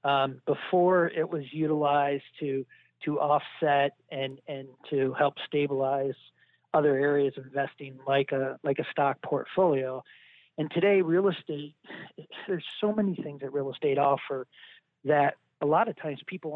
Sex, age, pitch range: male, 40-59, 140-165 Hz